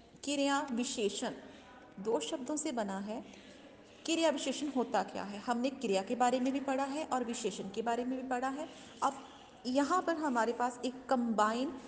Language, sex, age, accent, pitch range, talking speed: Hindi, female, 30-49, native, 230-285 Hz, 175 wpm